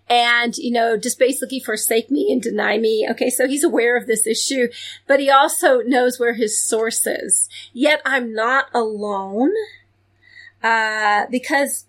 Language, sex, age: English, female, 30-49